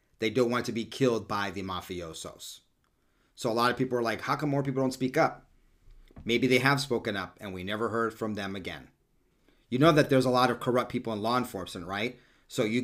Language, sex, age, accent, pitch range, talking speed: English, male, 40-59, American, 105-130 Hz, 235 wpm